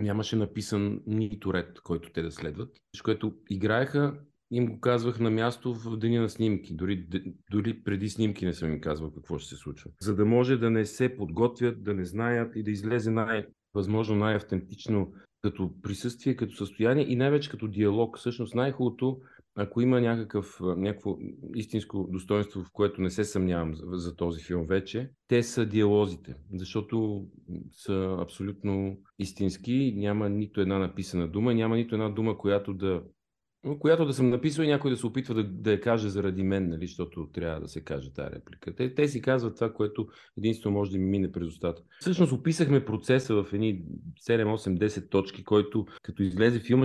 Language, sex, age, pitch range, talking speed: Bulgarian, male, 40-59, 95-120 Hz, 175 wpm